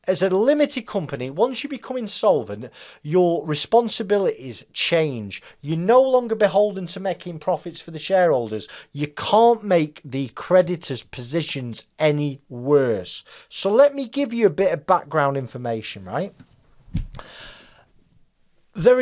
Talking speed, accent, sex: 130 wpm, British, male